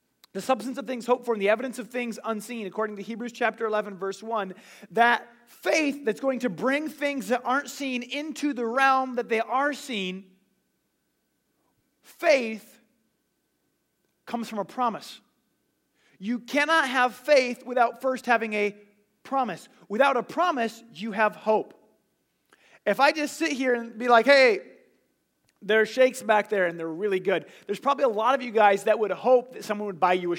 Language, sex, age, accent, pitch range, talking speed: English, male, 30-49, American, 210-255 Hz, 180 wpm